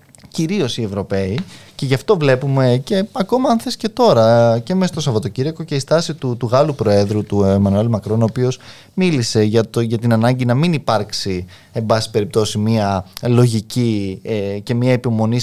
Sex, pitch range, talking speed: male, 110-165 Hz, 185 wpm